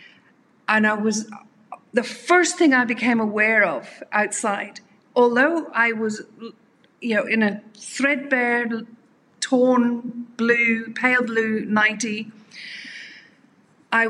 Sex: female